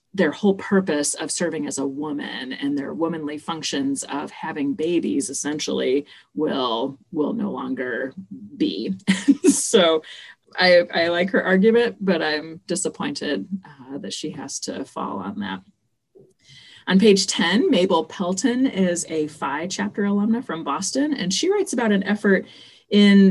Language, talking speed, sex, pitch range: English, 145 wpm, female, 155-210 Hz